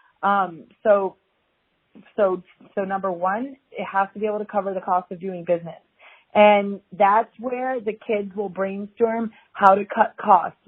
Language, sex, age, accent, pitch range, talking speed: English, female, 30-49, American, 190-220 Hz, 165 wpm